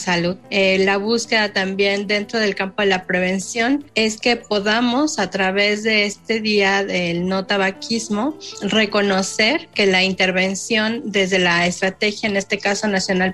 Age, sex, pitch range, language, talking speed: 30-49, female, 195-225 Hz, Spanish, 150 wpm